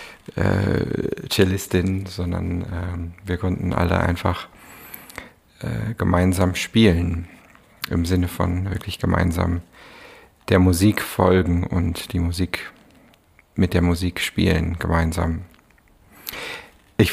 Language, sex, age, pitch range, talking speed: German, male, 50-69, 85-100 Hz, 100 wpm